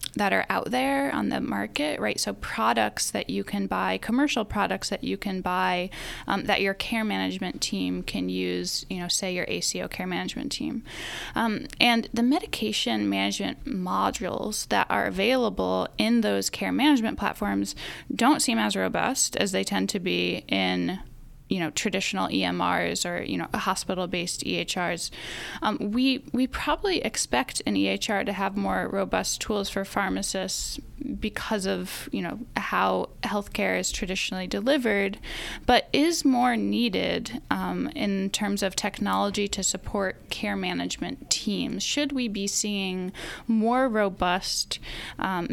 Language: English